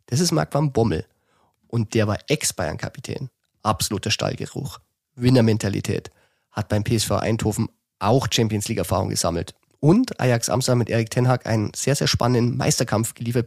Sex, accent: male, German